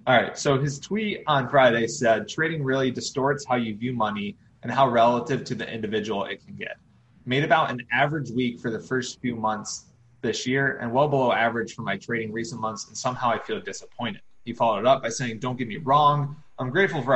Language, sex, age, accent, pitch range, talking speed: English, male, 20-39, American, 115-135 Hz, 220 wpm